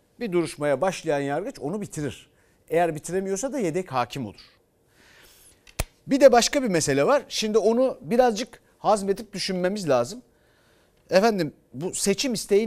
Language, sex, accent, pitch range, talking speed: Turkish, male, native, 135-215 Hz, 135 wpm